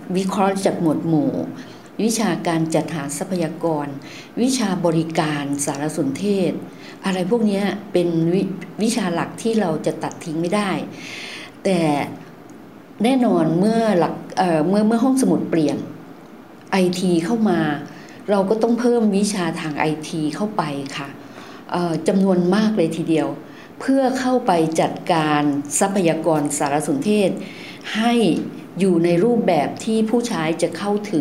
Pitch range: 155-200 Hz